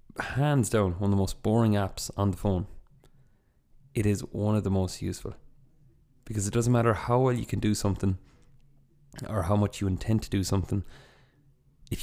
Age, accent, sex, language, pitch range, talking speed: 20-39, Irish, male, English, 95-120 Hz, 185 wpm